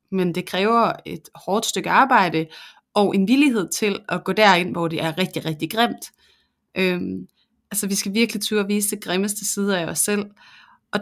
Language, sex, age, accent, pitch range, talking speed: Danish, female, 30-49, native, 175-215 Hz, 190 wpm